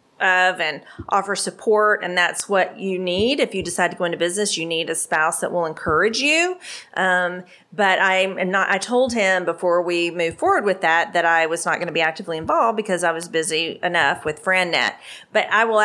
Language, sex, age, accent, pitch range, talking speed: English, female, 40-59, American, 170-190 Hz, 215 wpm